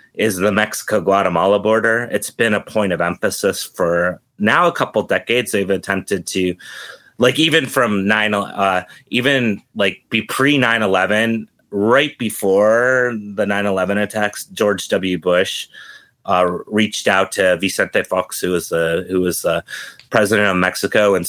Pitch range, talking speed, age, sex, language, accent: 90-105 Hz, 135 wpm, 30-49, male, English, American